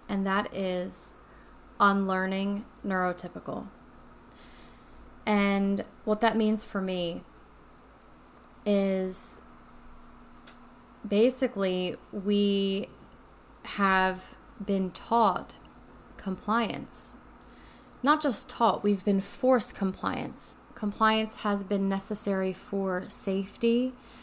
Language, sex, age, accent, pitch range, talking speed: English, female, 20-39, American, 190-230 Hz, 75 wpm